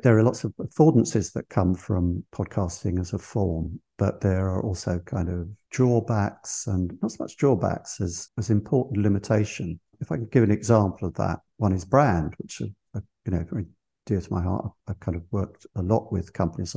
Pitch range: 95-110 Hz